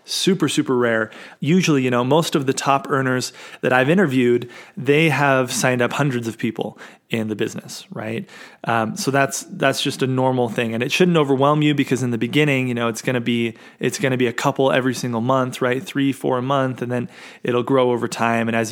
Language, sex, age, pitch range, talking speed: English, male, 30-49, 125-165 Hz, 225 wpm